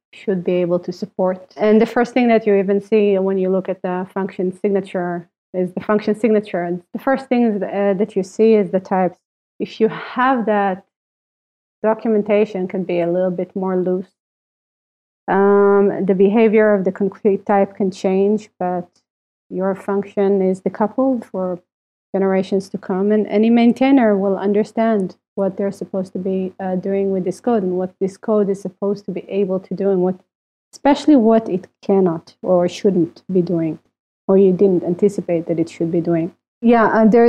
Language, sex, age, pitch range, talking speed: English, female, 30-49, 190-220 Hz, 185 wpm